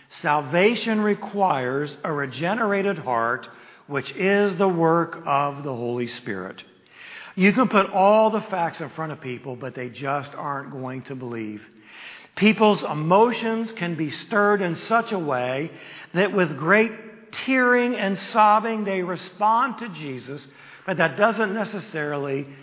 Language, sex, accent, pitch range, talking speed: English, male, American, 140-205 Hz, 140 wpm